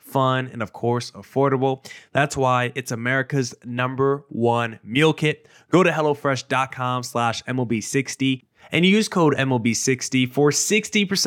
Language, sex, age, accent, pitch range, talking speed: English, male, 20-39, American, 120-140 Hz, 120 wpm